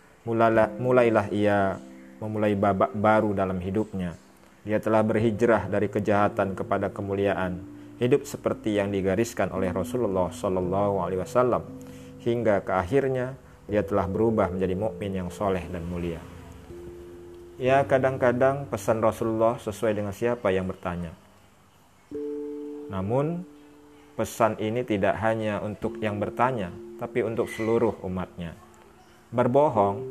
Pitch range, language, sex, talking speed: 95-120 Hz, Indonesian, male, 110 wpm